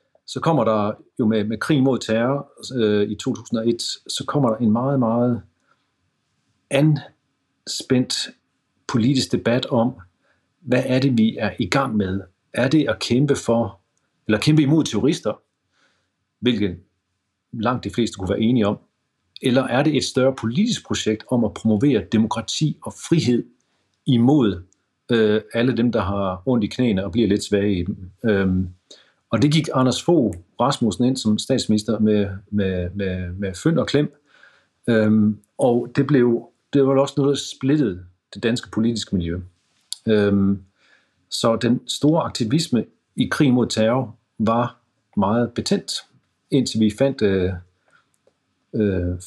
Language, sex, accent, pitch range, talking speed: Danish, male, native, 100-125 Hz, 145 wpm